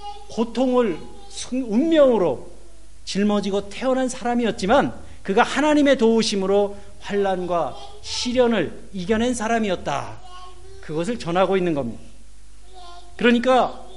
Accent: native